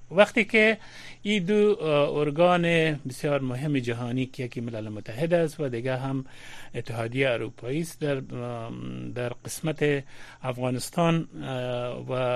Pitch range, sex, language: 125-165 Hz, male, Persian